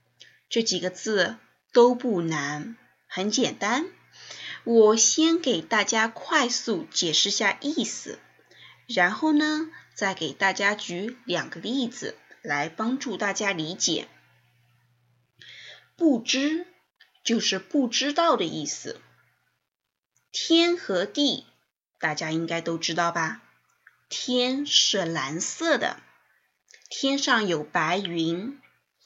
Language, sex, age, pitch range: English, female, 20-39, 175-275 Hz